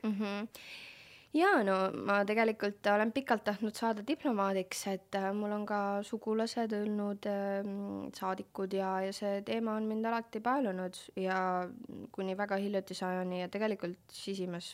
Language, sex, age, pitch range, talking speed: English, female, 20-39, 175-205 Hz, 140 wpm